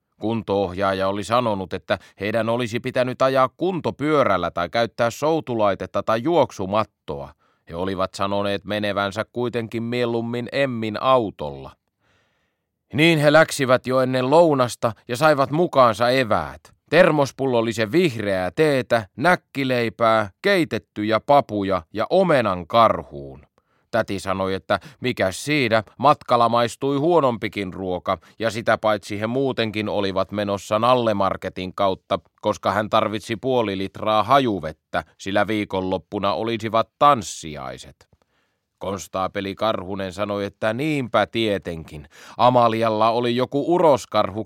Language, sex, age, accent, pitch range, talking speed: Finnish, male, 30-49, native, 100-125 Hz, 110 wpm